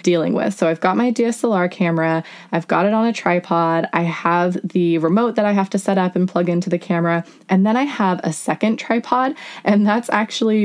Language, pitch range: English, 165-205 Hz